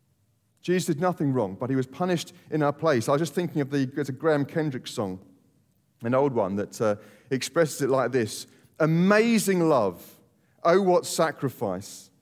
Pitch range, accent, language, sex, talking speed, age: 135-195 Hz, British, English, male, 170 wpm, 40-59